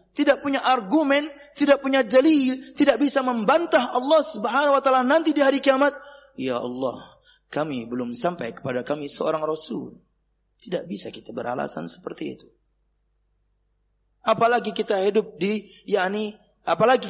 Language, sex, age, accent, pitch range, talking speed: Indonesian, male, 30-49, native, 160-260 Hz, 135 wpm